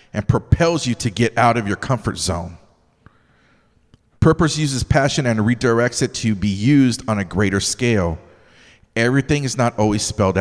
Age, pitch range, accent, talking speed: 40-59, 100-125 Hz, American, 160 wpm